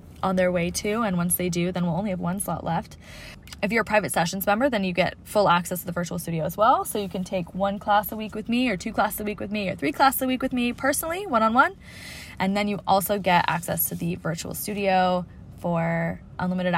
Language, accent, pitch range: English, American, 175-210 Hz